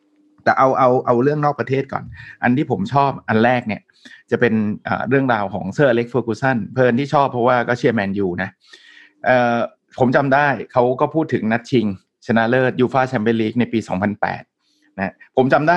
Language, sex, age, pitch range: Thai, male, 30-49, 115-140 Hz